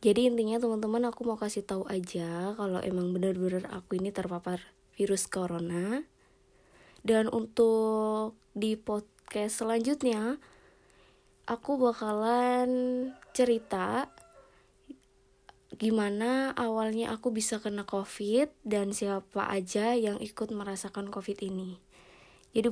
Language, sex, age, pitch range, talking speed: Indonesian, female, 20-39, 205-245 Hz, 105 wpm